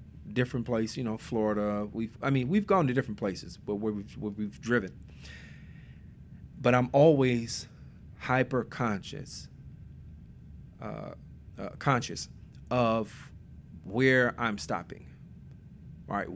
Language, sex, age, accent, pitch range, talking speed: English, male, 40-59, American, 105-135 Hz, 115 wpm